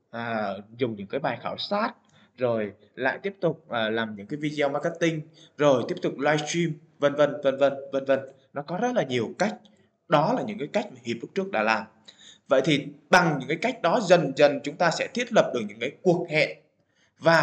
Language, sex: Vietnamese, male